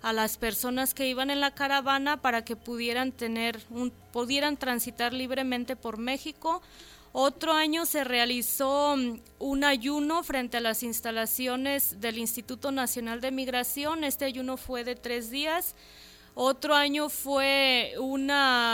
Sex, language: female, Spanish